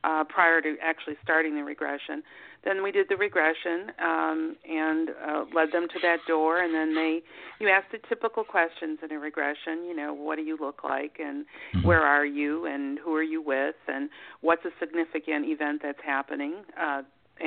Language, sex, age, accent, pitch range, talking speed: English, female, 50-69, American, 150-170 Hz, 190 wpm